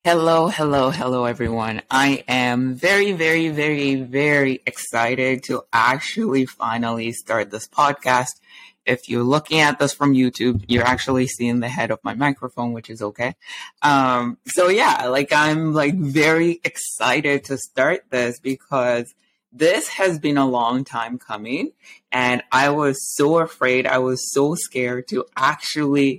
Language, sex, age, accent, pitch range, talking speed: English, female, 20-39, American, 125-150 Hz, 150 wpm